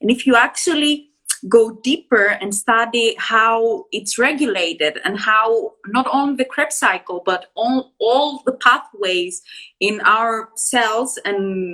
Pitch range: 200-260 Hz